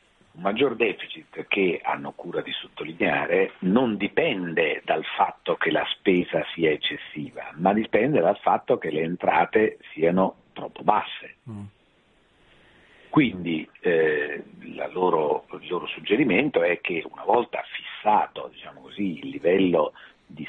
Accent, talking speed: native, 130 wpm